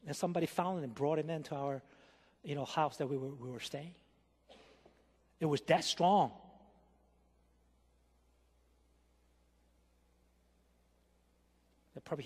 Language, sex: Korean, male